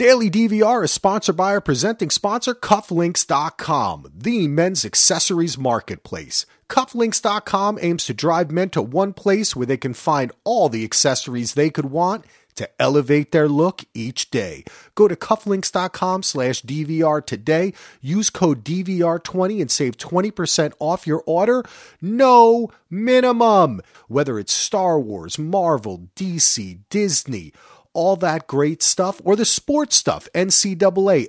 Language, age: English, 40-59